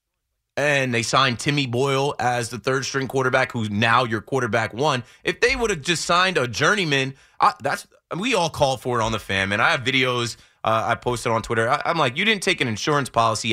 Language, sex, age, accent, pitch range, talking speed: English, male, 20-39, American, 115-175 Hz, 220 wpm